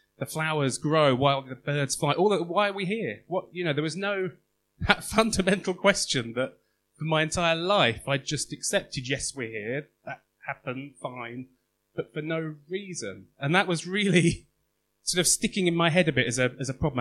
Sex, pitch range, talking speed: male, 130-165 Hz, 200 wpm